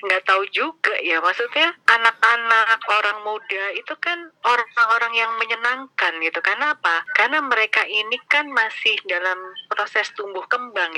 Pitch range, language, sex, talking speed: 180-245 Hz, Indonesian, female, 135 wpm